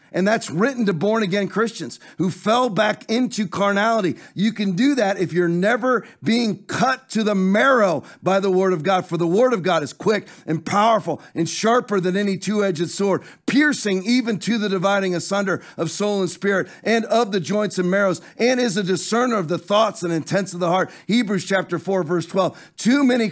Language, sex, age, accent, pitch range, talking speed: English, male, 40-59, American, 185-220 Hz, 200 wpm